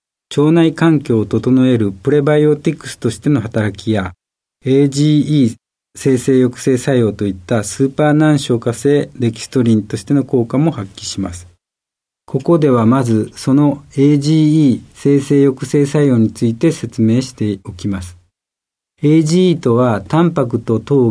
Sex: male